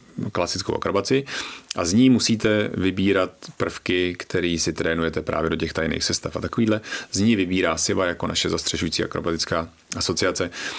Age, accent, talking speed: 30-49, native, 150 wpm